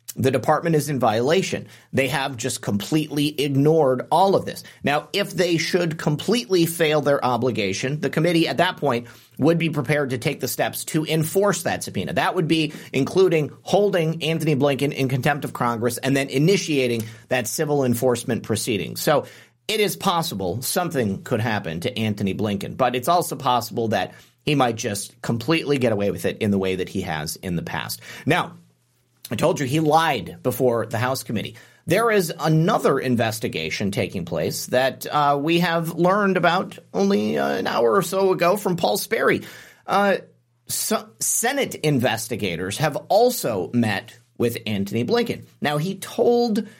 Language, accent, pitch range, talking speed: English, American, 120-170 Hz, 170 wpm